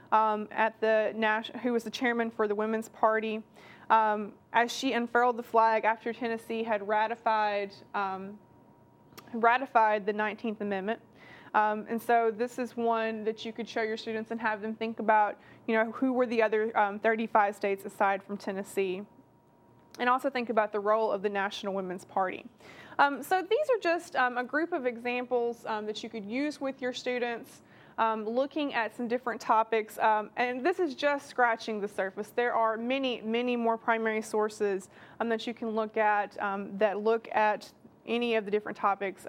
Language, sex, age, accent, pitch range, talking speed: English, female, 20-39, American, 215-240 Hz, 185 wpm